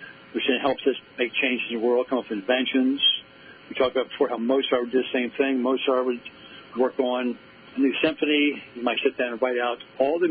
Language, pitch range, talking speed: English, 120-140 Hz, 235 wpm